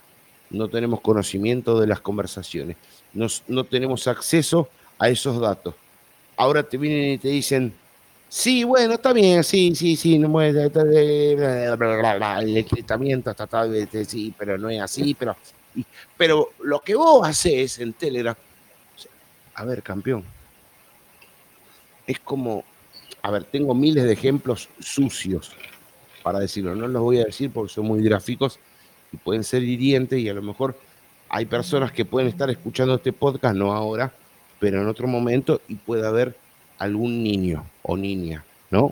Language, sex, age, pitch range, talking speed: Spanish, male, 50-69, 105-145 Hz, 165 wpm